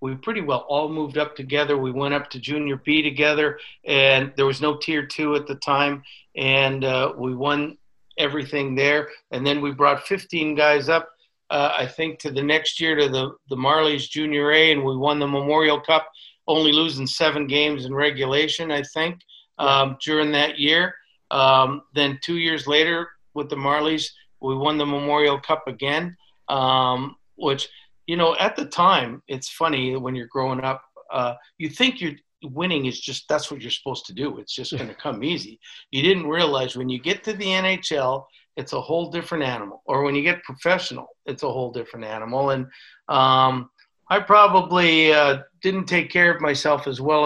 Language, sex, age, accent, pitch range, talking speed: English, male, 50-69, American, 135-155 Hz, 190 wpm